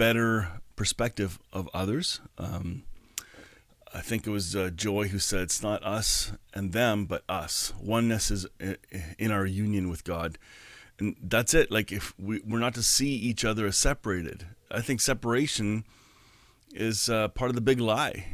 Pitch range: 100-120 Hz